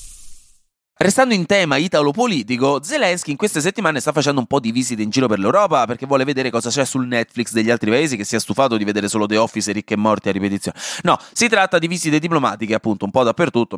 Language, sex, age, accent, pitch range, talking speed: Italian, male, 30-49, native, 115-175 Hz, 225 wpm